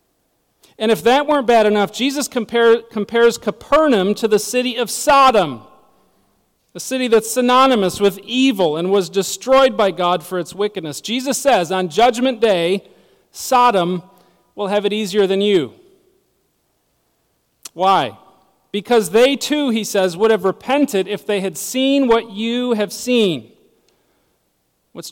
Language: English